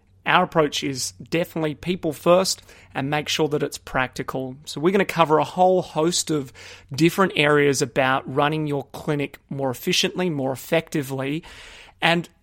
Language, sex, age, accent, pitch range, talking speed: English, male, 30-49, Australian, 140-170 Hz, 155 wpm